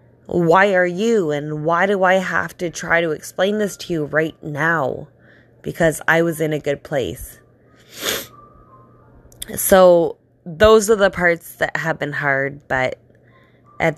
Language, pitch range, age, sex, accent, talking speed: English, 130-170 Hz, 20-39, female, American, 150 wpm